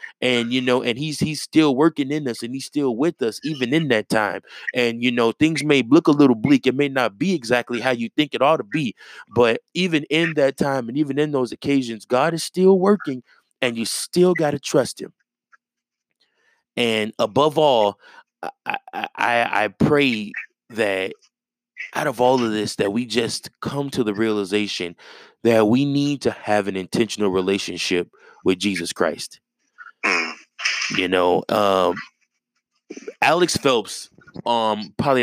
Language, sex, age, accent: English, male, 20-39, American